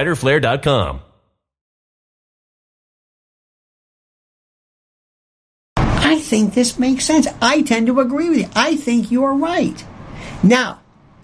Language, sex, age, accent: English, male, 50-69, American